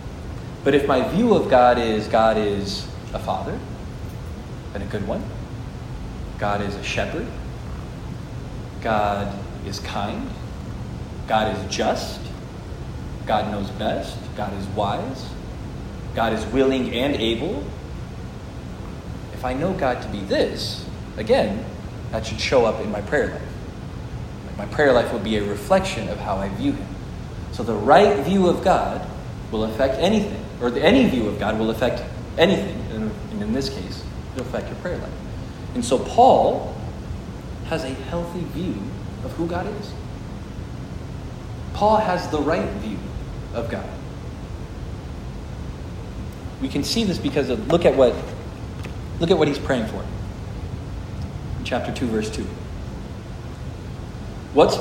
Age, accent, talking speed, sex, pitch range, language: 30-49, American, 140 wpm, male, 100-125 Hz, English